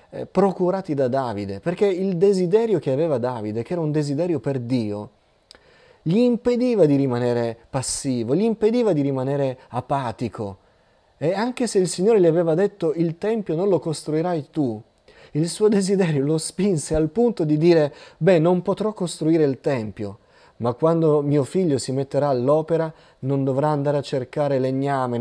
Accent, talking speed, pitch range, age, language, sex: native, 160 wpm, 125-170 Hz, 30-49, Italian, male